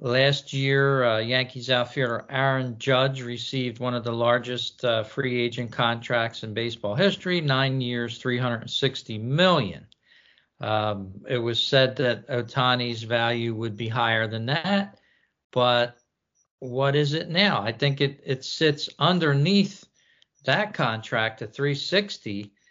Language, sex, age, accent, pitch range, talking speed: English, male, 50-69, American, 115-145 Hz, 130 wpm